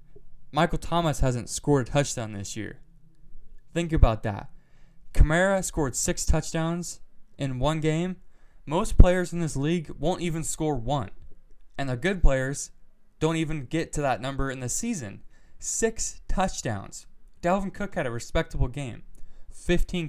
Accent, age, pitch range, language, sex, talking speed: American, 20-39, 135-170 Hz, English, male, 145 wpm